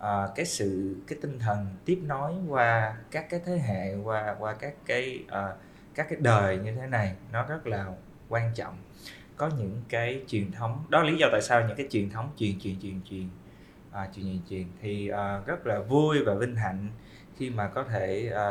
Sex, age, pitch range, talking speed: male, 20-39, 100-135 Hz, 210 wpm